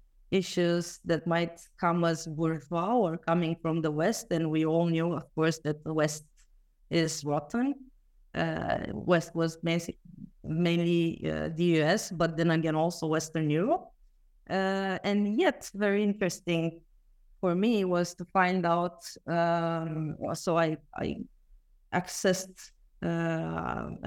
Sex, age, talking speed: female, 30-49, 130 wpm